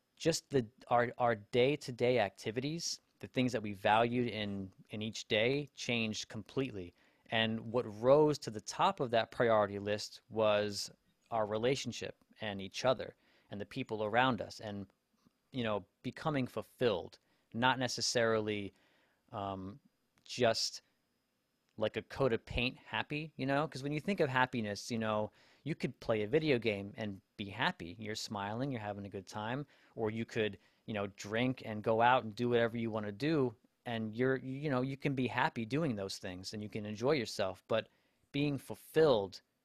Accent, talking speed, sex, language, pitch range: American, 175 wpm, male, English, 105-130 Hz